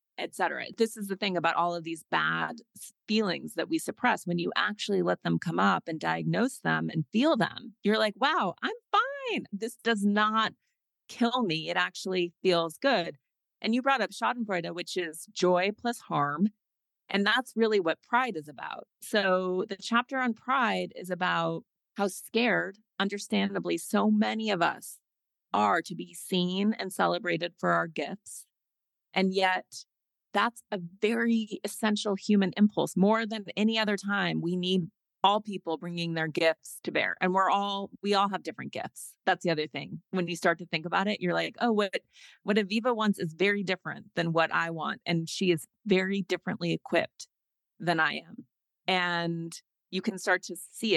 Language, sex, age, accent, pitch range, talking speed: English, female, 30-49, American, 170-215 Hz, 180 wpm